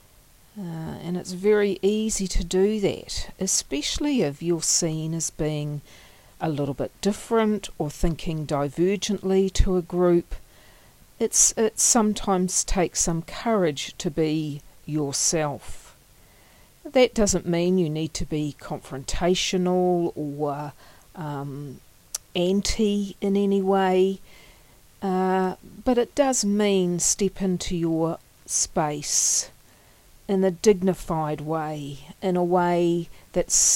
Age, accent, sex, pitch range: 50-69, Australian, female, 150-185 Hz